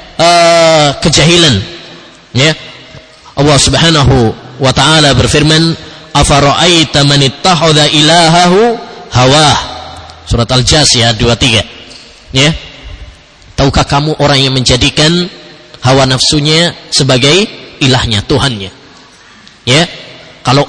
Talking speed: 90 wpm